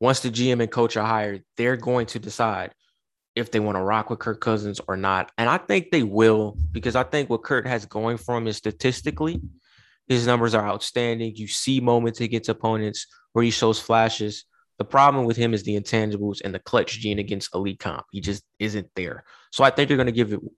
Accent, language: American, English